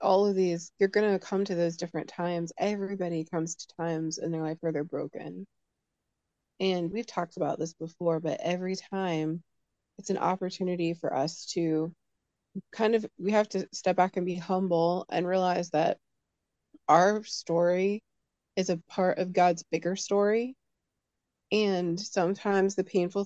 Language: English